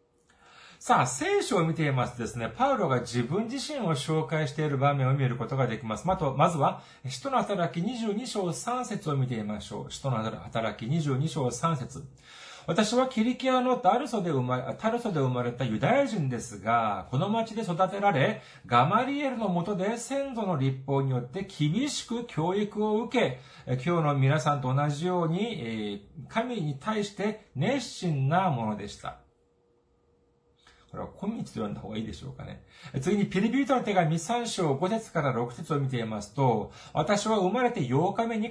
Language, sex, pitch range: Japanese, male, 130-210 Hz